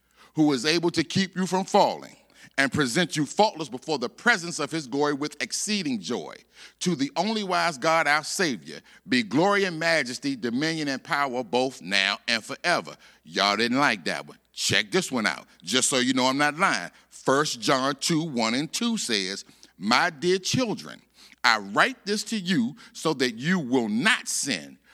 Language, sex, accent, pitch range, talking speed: English, male, American, 145-210 Hz, 185 wpm